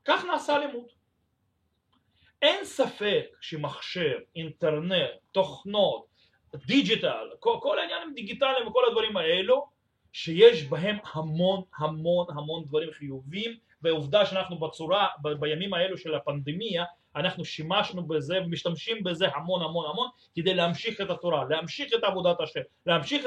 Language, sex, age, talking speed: Russian, male, 30-49, 120 wpm